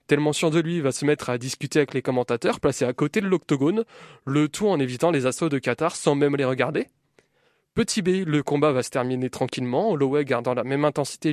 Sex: male